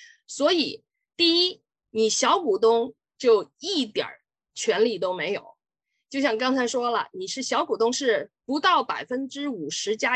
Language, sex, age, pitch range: Chinese, female, 20-39, 250-415 Hz